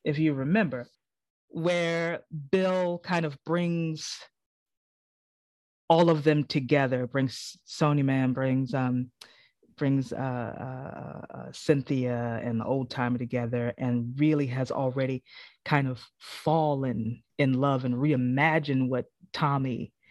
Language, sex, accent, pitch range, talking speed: English, female, American, 130-170 Hz, 115 wpm